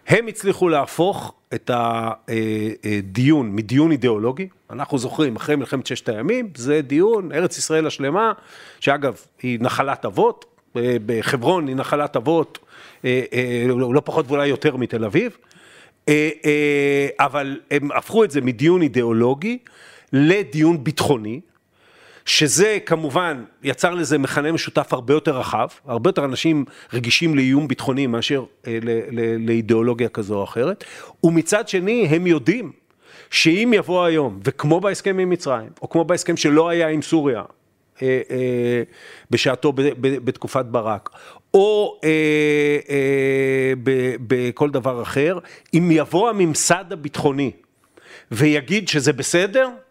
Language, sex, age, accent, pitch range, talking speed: Hebrew, male, 50-69, native, 125-165 Hz, 125 wpm